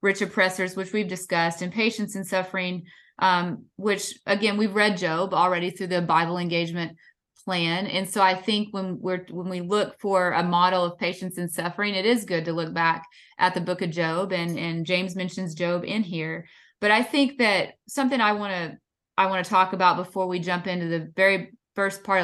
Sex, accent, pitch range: female, American, 175-205 Hz